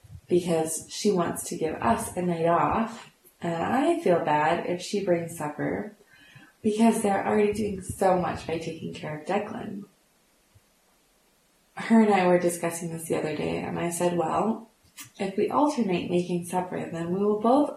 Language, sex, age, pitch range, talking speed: English, female, 20-39, 170-210 Hz, 170 wpm